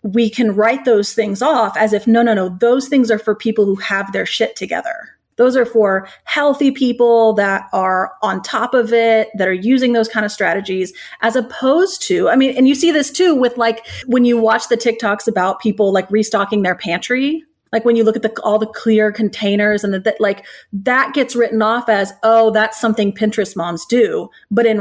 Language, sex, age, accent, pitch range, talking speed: English, female, 30-49, American, 200-240 Hz, 215 wpm